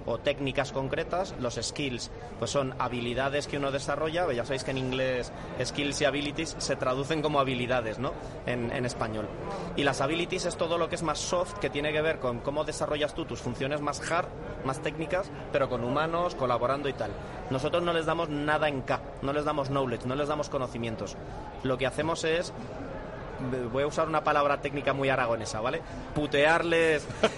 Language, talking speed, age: Spanish, 190 wpm, 30-49